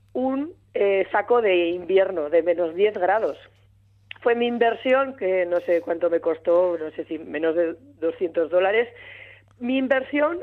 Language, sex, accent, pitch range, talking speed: Spanish, female, Spanish, 175-240 Hz, 155 wpm